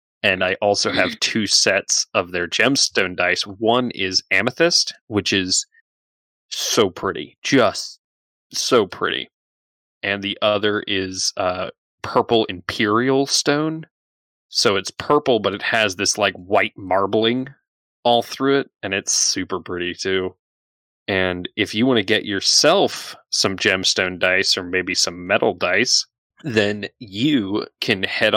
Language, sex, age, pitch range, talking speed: English, male, 20-39, 95-115 Hz, 140 wpm